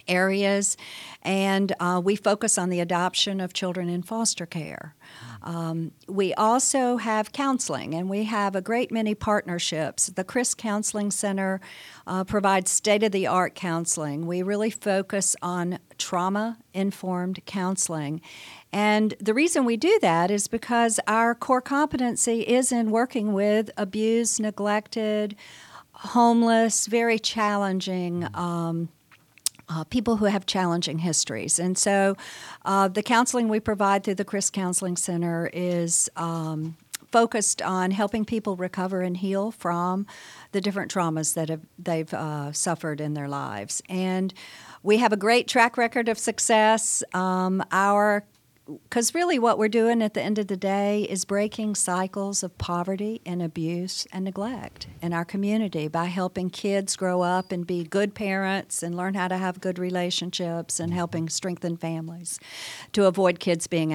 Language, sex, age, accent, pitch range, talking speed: English, female, 50-69, American, 175-215 Hz, 145 wpm